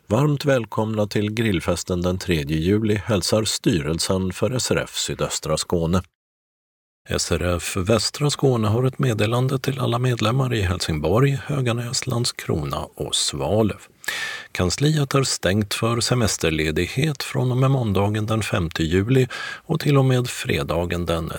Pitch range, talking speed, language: 90-125 Hz, 130 wpm, Swedish